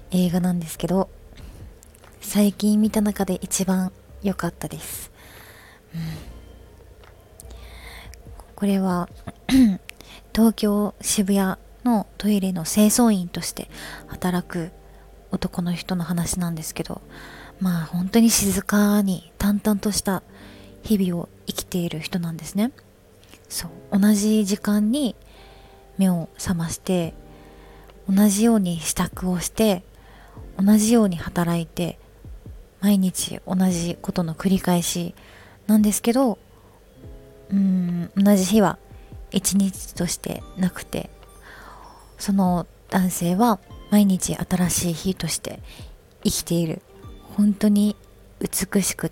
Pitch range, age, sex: 170-205 Hz, 30-49, female